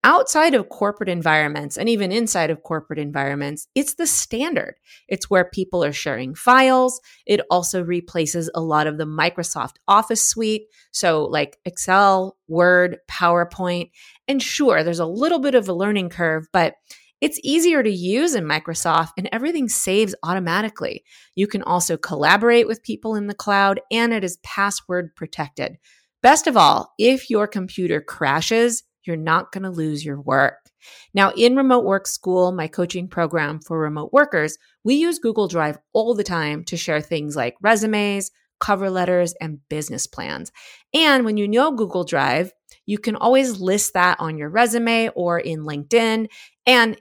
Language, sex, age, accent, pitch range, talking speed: English, female, 30-49, American, 165-230 Hz, 165 wpm